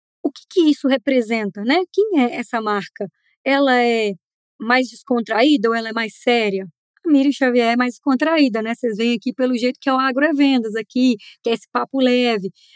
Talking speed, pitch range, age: 195 wpm, 240-305 Hz, 20-39